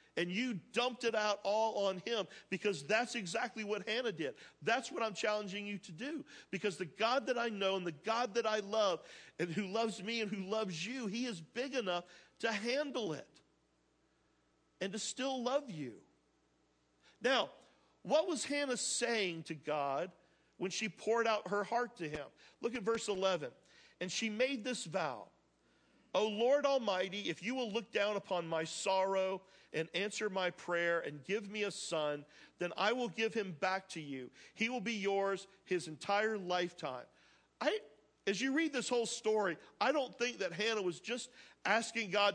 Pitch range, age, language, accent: 180-230 Hz, 50-69, English, American